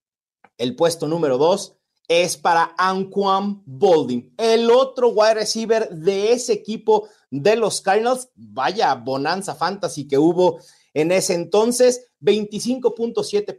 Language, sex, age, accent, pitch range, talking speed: Spanish, male, 40-59, Mexican, 165-235 Hz, 120 wpm